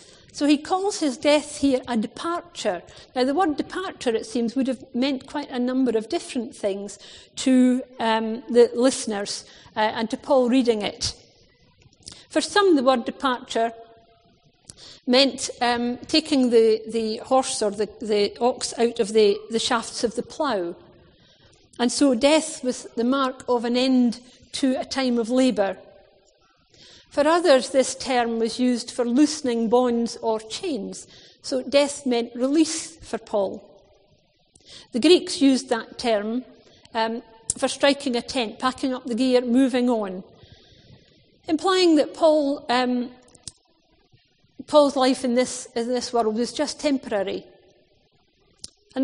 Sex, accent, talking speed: female, British, 145 wpm